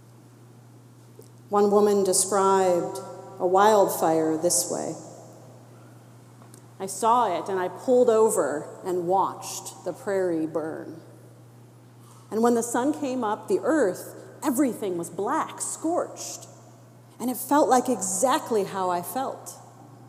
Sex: female